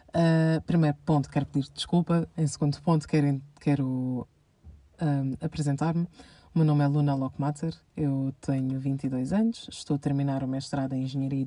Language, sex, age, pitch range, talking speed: Portuguese, female, 20-39, 140-160 Hz, 145 wpm